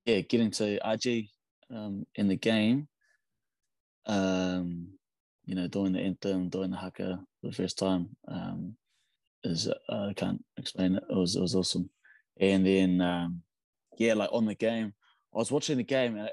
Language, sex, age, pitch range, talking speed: English, male, 20-39, 95-115 Hz, 175 wpm